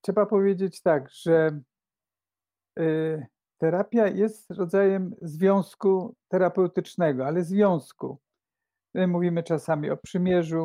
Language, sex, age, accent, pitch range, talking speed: Polish, male, 50-69, native, 155-185 Hz, 95 wpm